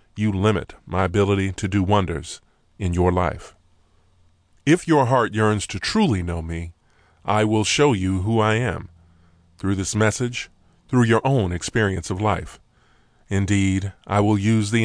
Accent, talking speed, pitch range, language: American, 160 wpm, 95-115 Hz, English